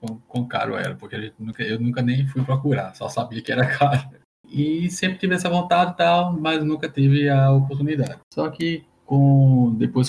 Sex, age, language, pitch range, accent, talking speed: male, 10-29, Portuguese, 115-140 Hz, Brazilian, 190 wpm